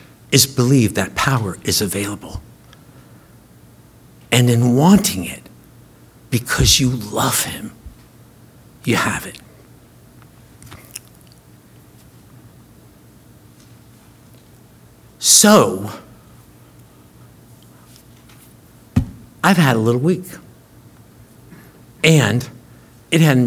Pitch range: 120-160 Hz